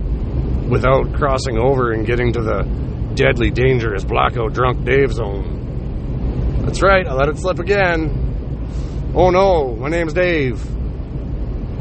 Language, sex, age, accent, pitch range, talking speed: English, male, 30-49, American, 115-150 Hz, 125 wpm